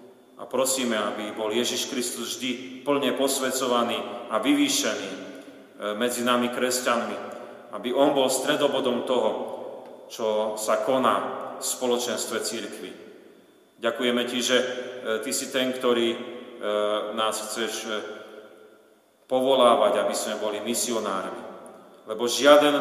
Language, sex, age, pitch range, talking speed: Slovak, male, 40-59, 110-130 Hz, 110 wpm